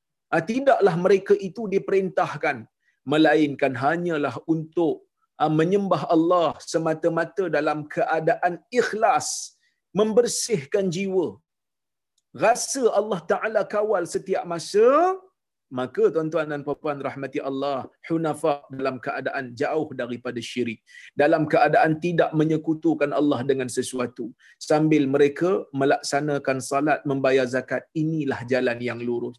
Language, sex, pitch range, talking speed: Malayalam, male, 150-215 Hz, 105 wpm